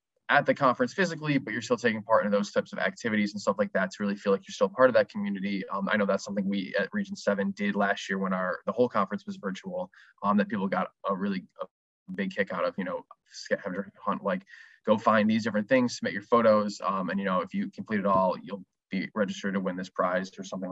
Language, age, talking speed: English, 20-39, 255 wpm